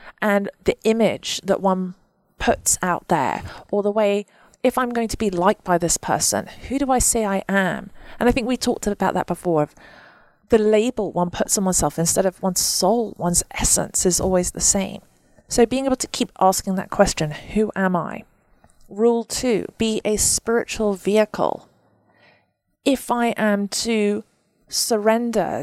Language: English